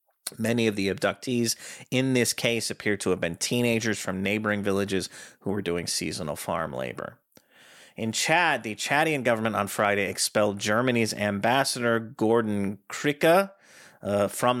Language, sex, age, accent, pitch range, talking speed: English, male, 30-49, American, 100-125 Hz, 145 wpm